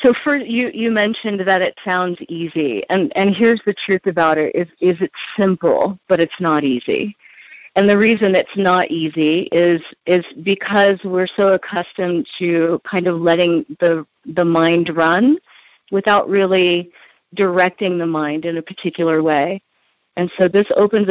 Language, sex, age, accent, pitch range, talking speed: English, female, 40-59, American, 175-200 Hz, 160 wpm